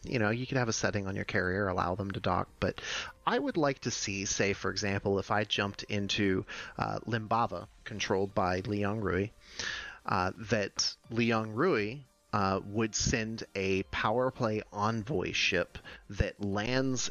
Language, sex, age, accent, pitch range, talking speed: English, male, 30-49, American, 100-120 Hz, 165 wpm